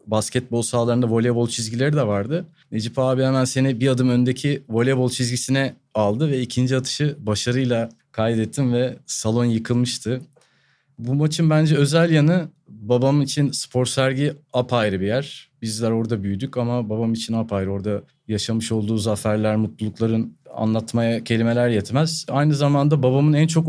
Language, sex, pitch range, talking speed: Turkish, male, 110-135 Hz, 140 wpm